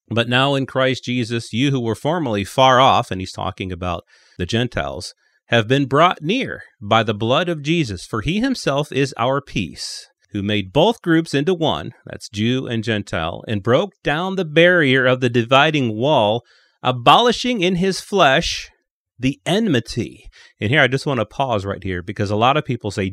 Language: English